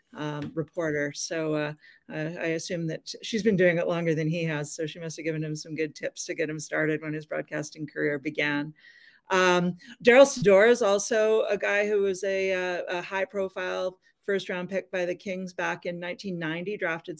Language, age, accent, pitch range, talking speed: English, 40-59, American, 165-195 Hz, 200 wpm